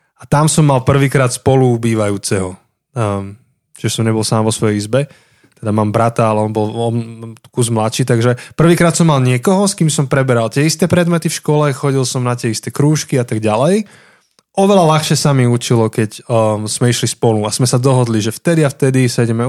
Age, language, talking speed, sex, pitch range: 20-39, Slovak, 200 wpm, male, 115-145 Hz